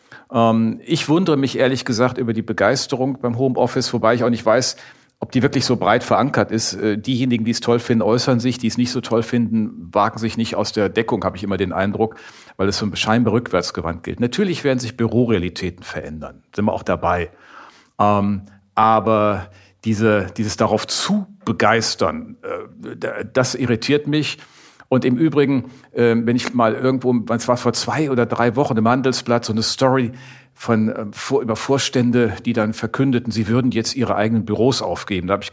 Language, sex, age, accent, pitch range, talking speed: German, male, 50-69, German, 105-125 Hz, 175 wpm